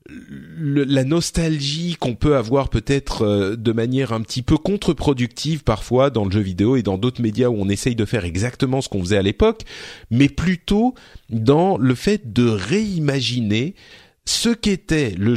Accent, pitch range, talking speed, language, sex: French, 110-150 Hz, 170 wpm, French, male